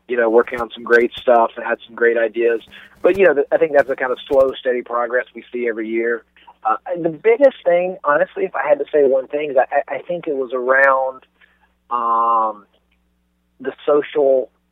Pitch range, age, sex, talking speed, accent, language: 115-135 Hz, 30-49, male, 210 wpm, American, English